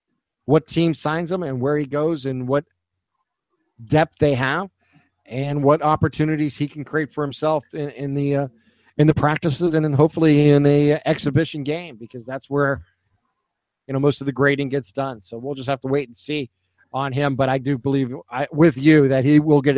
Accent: American